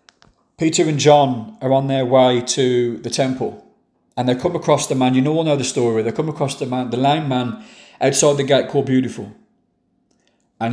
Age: 40-59